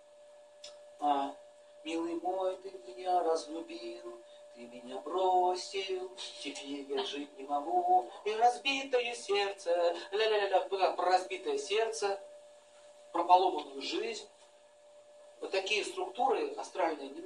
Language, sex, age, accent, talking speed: Russian, male, 40-59, native, 95 wpm